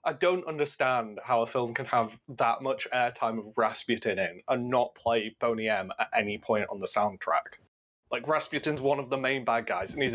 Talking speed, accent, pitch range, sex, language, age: 205 wpm, British, 120-155 Hz, male, English, 20-39